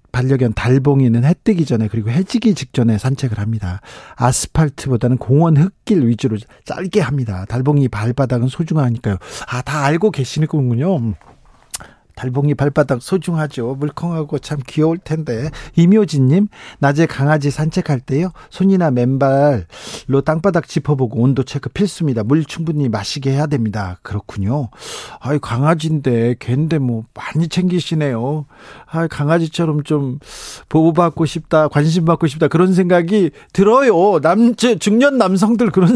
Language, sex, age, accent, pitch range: Korean, male, 40-59, native, 130-175 Hz